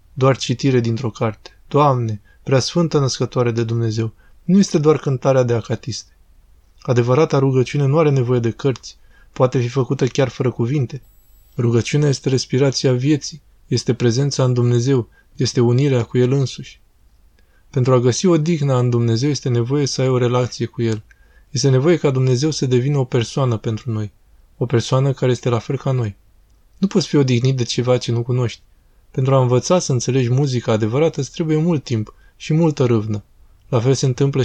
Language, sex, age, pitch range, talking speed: Romanian, male, 20-39, 115-140 Hz, 180 wpm